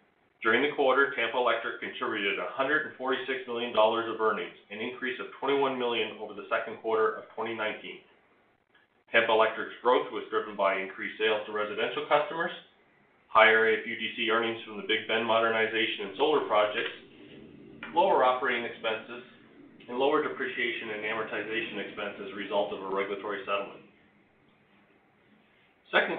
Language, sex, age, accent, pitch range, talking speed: English, male, 40-59, American, 110-130 Hz, 140 wpm